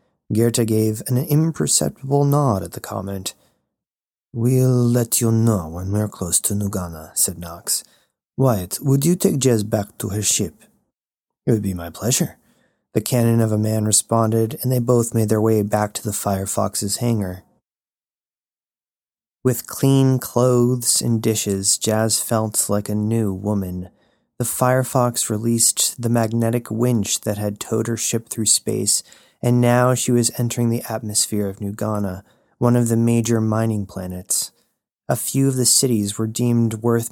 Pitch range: 105-120 Hz